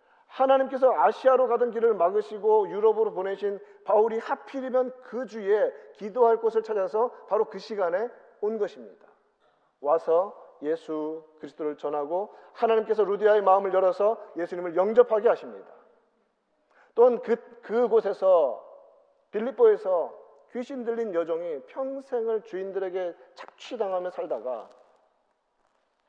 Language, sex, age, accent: Korean, male, 40-59, native